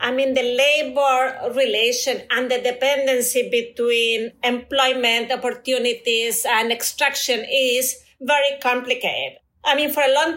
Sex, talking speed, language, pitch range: female, 120 wpm, English, 250-290 Hz